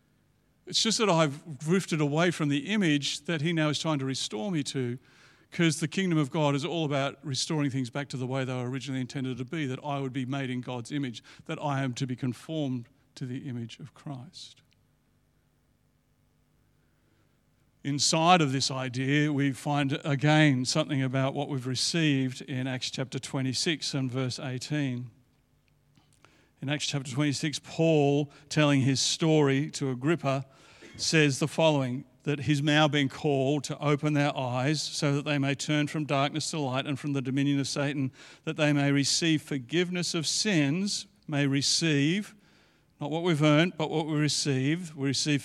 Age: 50-69